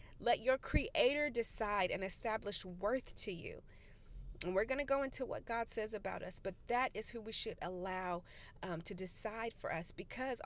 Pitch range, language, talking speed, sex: 185-230 Hz, English, 190 wpm, female